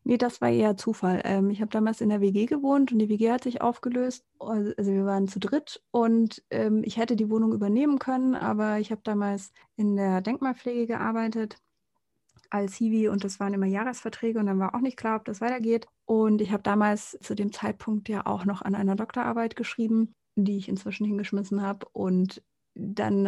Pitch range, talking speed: 195-235 Hz, 195 wpm